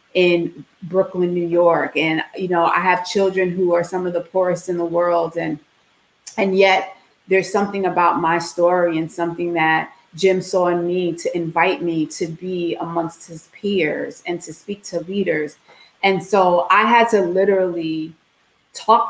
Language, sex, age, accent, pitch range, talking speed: English, female, 30-49, American, 170-195 Hz, 170 wpm